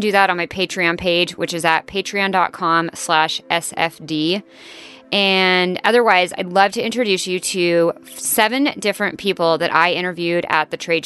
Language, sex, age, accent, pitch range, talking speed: English, female, 30-49, American, 170-205 Hz, 150 wpm